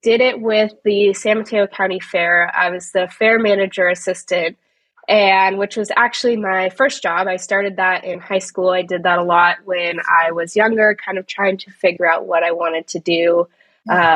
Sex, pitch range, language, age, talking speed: female, 175-210 Hz, English, 20-39, 205 wpm